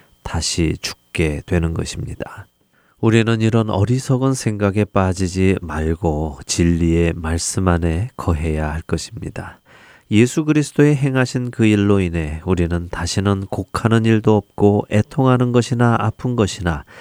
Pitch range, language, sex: 85-115 Hz, Korean, male